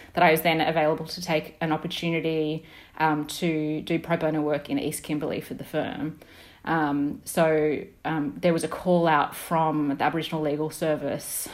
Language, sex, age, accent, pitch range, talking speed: English, female, 30-49, Australian, 150-170 Hz, 175 wpm